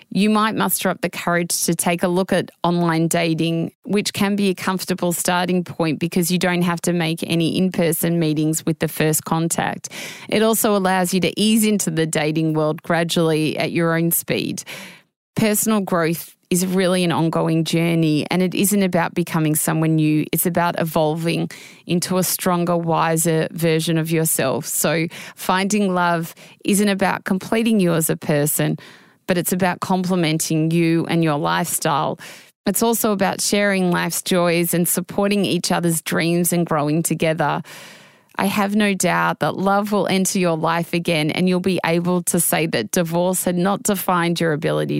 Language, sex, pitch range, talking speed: English, female, 165-190 Hz, 170 wpm